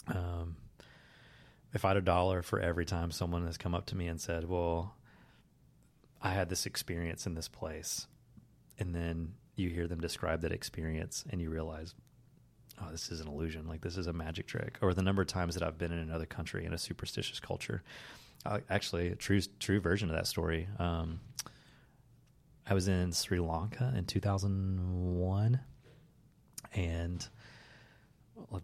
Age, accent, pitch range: 30-49, American, 85-110 Hz